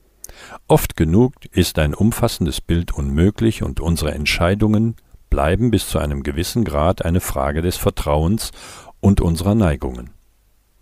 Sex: male